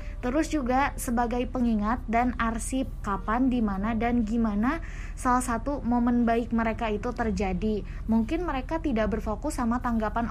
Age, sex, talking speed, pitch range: 20-39, female, 135 wpm, 215-250 Hz